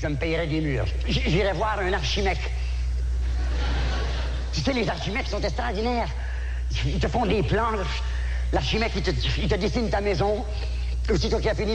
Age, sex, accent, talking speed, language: 50-69, male, French, 175 wpm, French